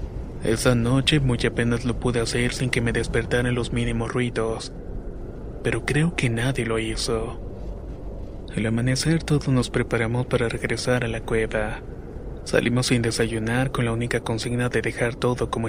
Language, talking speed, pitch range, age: Spanish, 155 wpm, 115-125 Hz, 20-39